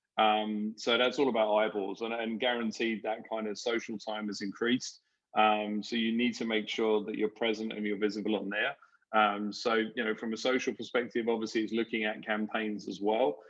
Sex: male